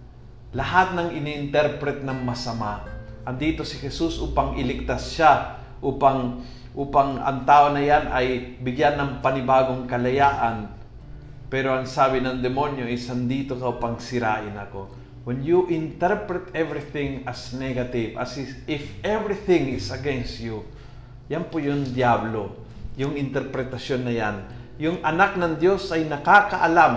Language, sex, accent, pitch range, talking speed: Filipino, male, native, 120-150 Hz, 135 wpm